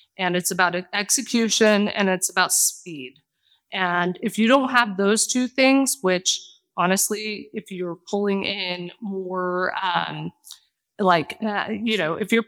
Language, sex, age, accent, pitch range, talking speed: English, female, 20-39, American, 180-220 Hz, 145 wpm